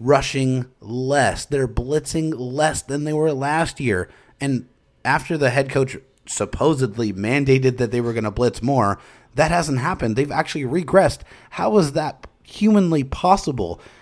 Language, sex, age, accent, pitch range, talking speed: English, male, 30-49, American, 125-160 Hz, 150 wpm